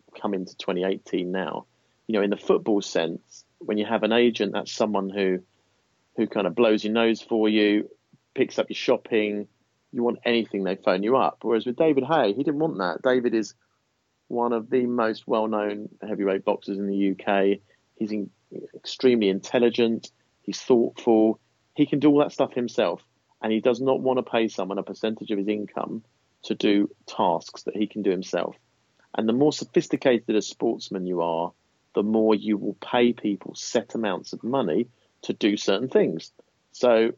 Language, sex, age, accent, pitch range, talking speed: English, male, 30-49, British, 100-120 Hz, 180 wpm